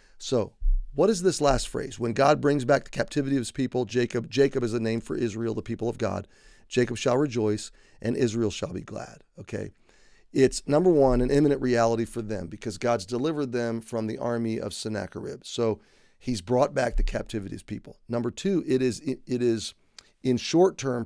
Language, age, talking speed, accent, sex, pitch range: English, 40-59, 200 wpm, American, male, 110-130 Hz